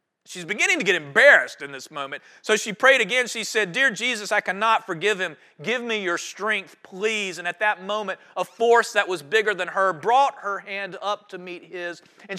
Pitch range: 160-220 Hz